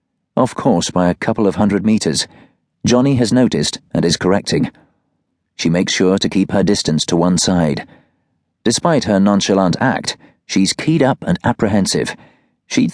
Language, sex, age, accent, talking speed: English, male, 40-59, British, 160 wpm